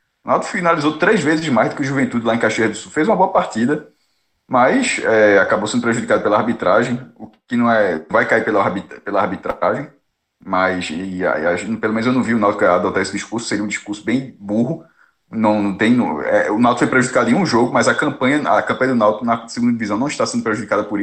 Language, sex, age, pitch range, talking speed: Portuguese, male, 20-39, 115-165 Hz, 205 wpm